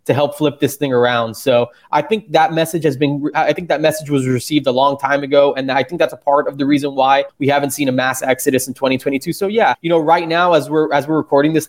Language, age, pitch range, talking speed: English, 20-39, 135-155 Hz, 270 wpm